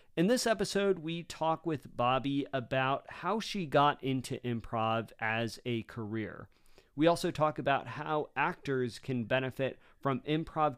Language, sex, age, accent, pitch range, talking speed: English, male, 40-59, American, 120-160 Hz, 145 wpm